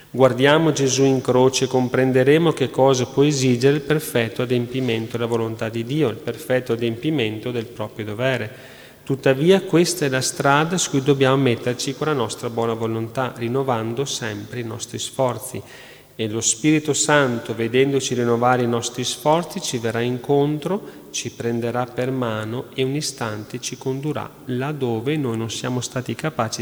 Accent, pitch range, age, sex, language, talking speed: native, 115-140 Hz, 30-49, male, Italian, 155 wpm